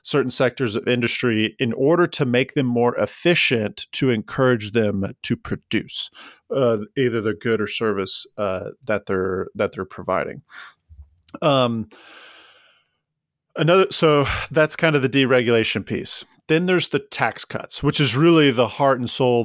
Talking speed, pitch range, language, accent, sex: 150 wpm, 115-145 Hz, English, American, male